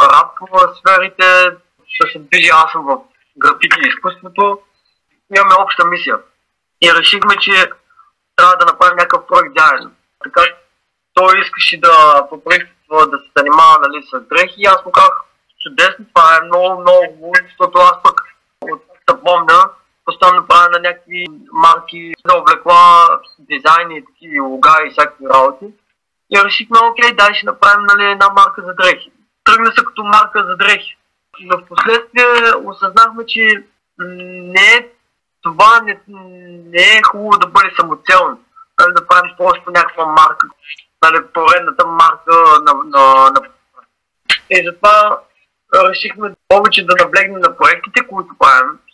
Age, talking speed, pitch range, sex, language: 20-39, 140 wpm, 170-210 Hz, male, Bulgarian